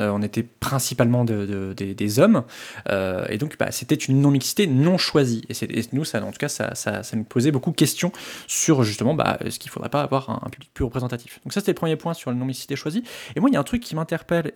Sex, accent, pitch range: male, French, 125-170 Hz